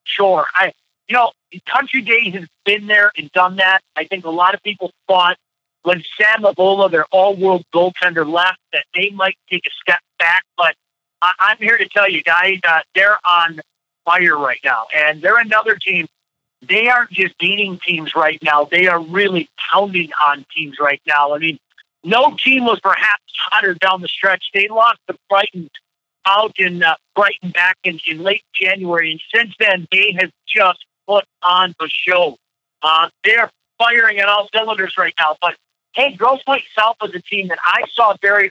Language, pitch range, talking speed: English, 170-215 Hz, 185 wpm